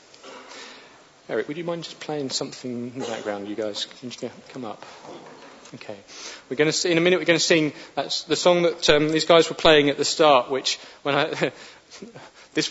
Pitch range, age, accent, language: 125-155 Hz, 30-49, British, English